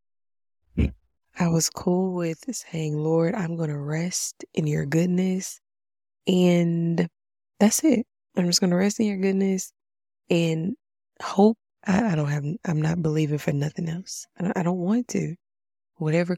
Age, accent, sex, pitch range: 20-39, American, female, 150-185 Hz